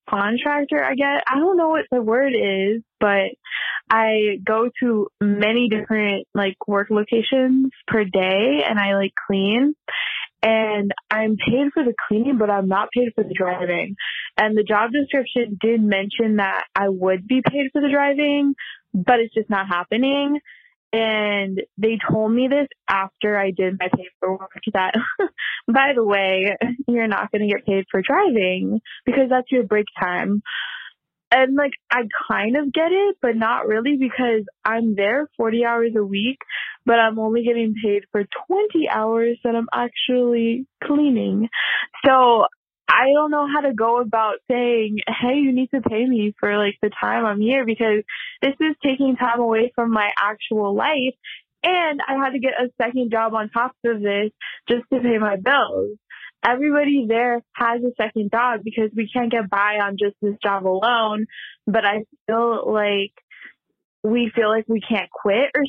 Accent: American